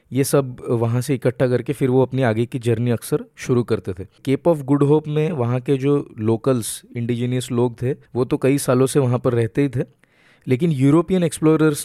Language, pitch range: Hindi, 120-145 Hz